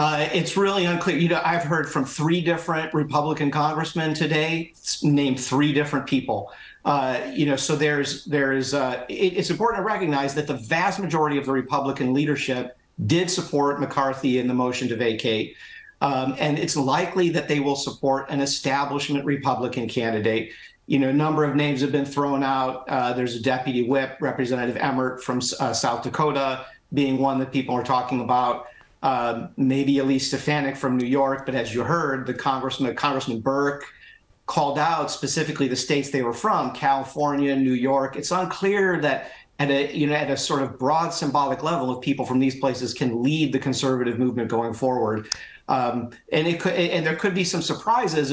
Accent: American